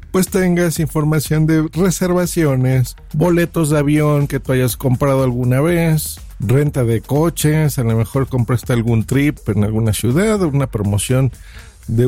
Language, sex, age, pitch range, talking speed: Spanish, male, 50-69, 115-155 Hz, 145 wpm